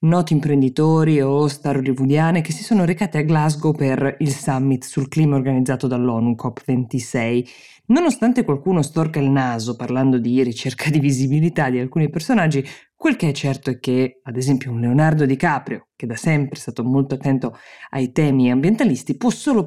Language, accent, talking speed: Italian, native, 170 wpm